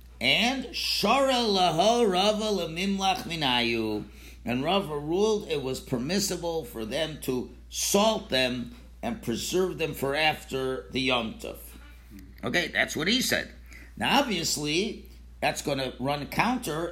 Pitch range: 130-200 Hz